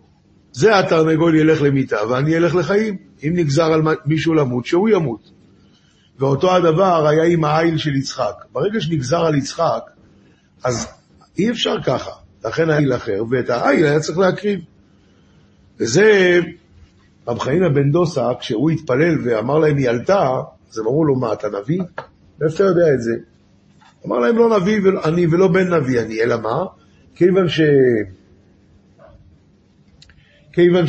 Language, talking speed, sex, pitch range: Hebrew, 140 wpm, male, 125-180 Hz